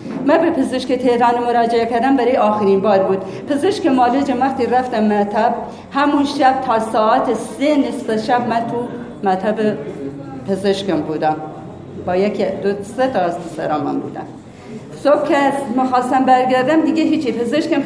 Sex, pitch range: female, 200-255 Hz